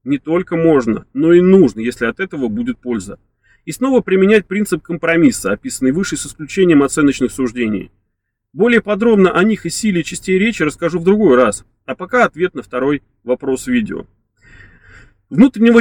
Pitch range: 130-190 Hz